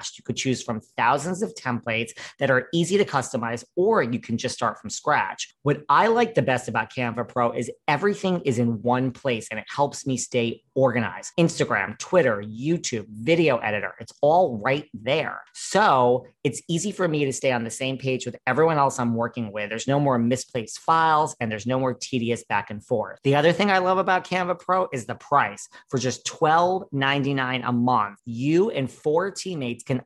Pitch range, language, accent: 120-155 Hz, English, American